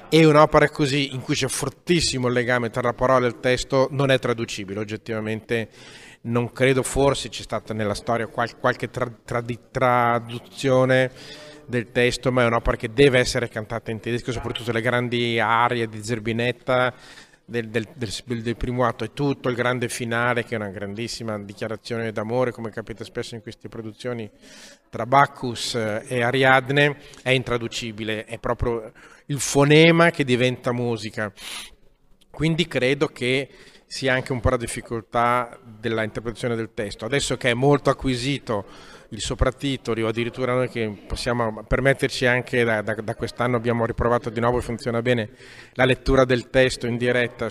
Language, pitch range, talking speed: Italian, 115-130 Hz, 155 wpm